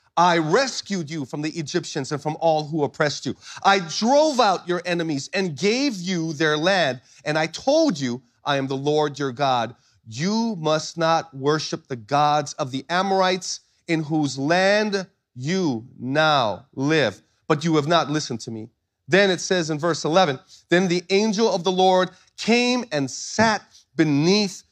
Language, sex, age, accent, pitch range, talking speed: English, male, 40-59, American, 155-225 Hz, 170 wpm